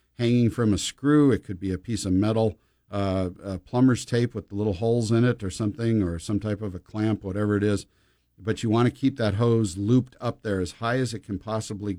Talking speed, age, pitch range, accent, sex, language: 240 wpm, 50-69, 95-115 Hz, American, male, English